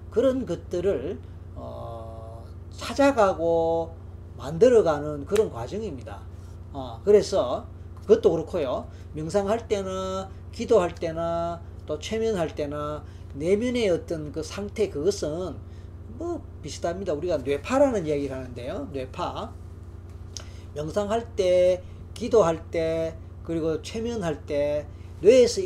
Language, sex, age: Korean, male, 40-59